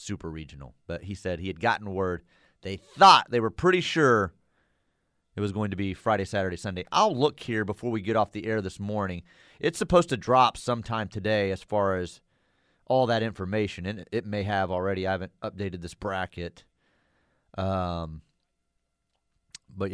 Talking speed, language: 175 wpm, English